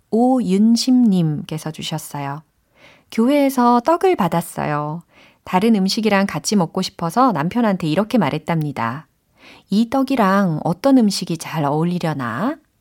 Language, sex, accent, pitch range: Korean, female, native, 160-225 Hz